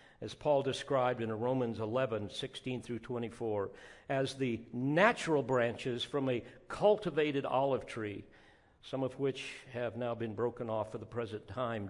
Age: 50-69